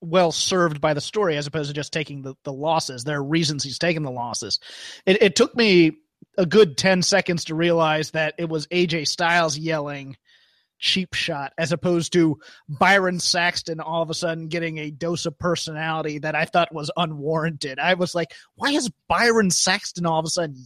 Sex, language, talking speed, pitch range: male, English, 195 wpm, 155-180 Hz